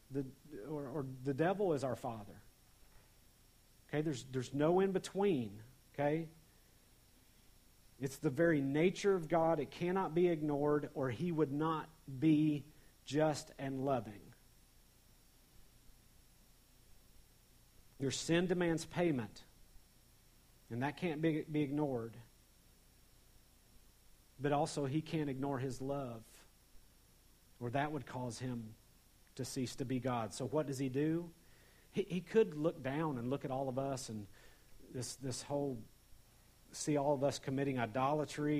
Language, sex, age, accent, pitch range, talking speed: English, male, 50-69, American, 120-155 Hz, 130 wpm